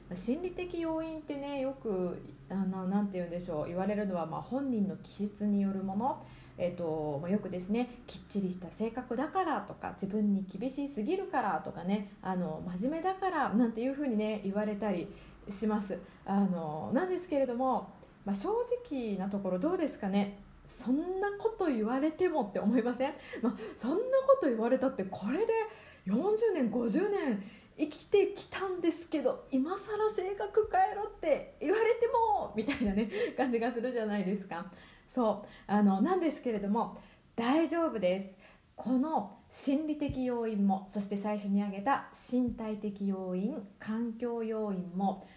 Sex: female